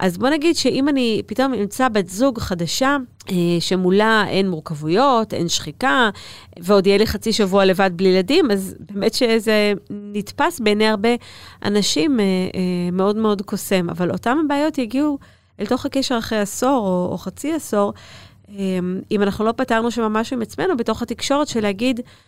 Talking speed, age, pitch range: 155 wpm, 30-49, 180-235 Hz